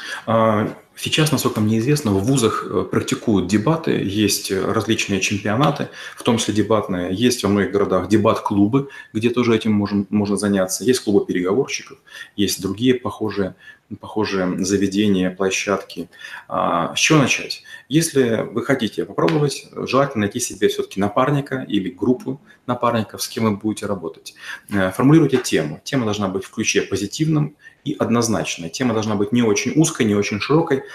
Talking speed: 140 wpm